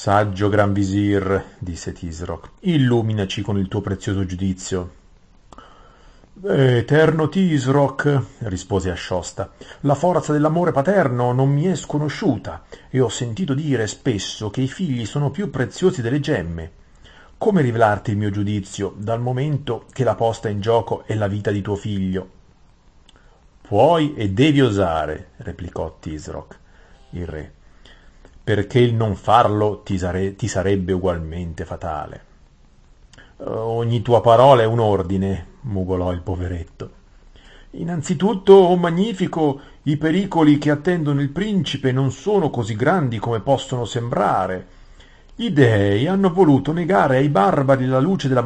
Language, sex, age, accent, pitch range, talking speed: Italian, male, 40-59, native, 95-140 Hz, 130 wpm